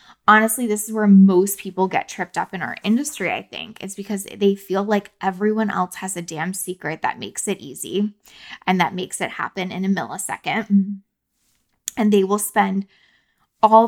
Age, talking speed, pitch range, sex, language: 20-39, 180 wpm, 185-215 Hz, female, English